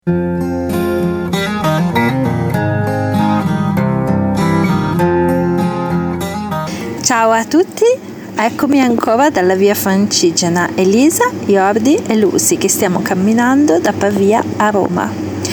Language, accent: Italian, native